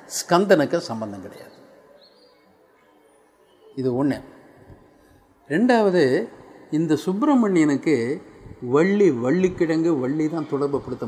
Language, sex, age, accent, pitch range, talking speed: Tamil, male, 50-69, native, 130-180 Hz, 70 wpm